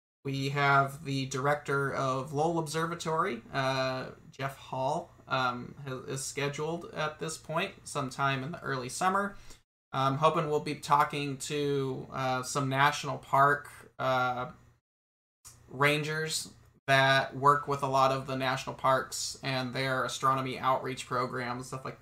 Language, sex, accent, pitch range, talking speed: English, male, American, 130-150 Hz, 135 wpm